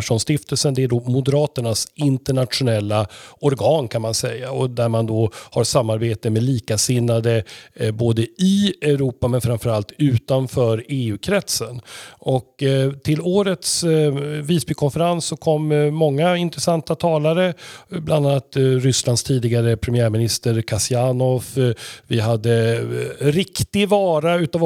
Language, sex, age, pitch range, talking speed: Swedish, male, 40-59, 120-155 Hz, 125 wpm